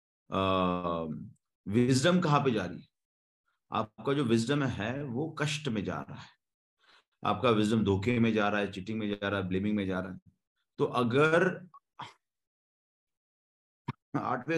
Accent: native